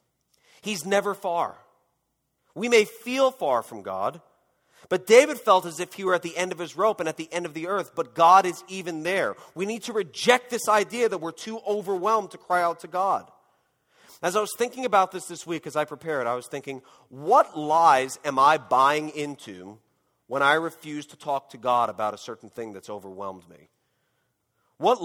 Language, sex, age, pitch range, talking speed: English, male, 40-59, 130-180 Hz, 200 wpm